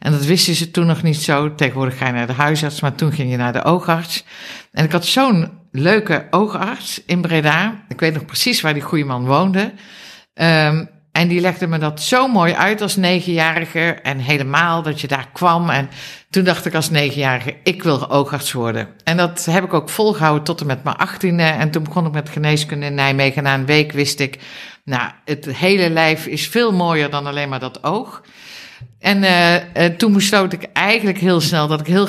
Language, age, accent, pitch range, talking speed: Dutch, 60-79, Dutch, 140-175 Hz, 210 wpm